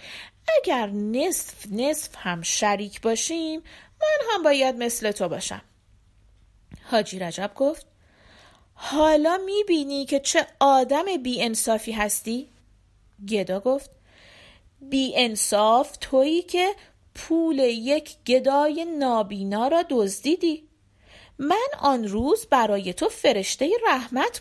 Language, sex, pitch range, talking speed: Persian, female, 215-310 Hz, 100 wpm